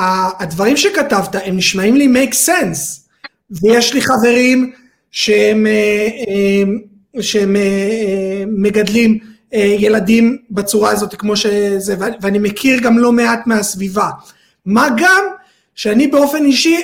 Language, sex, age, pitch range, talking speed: Hebrew, male, 30-49, 205-260 Hz, 105 wpm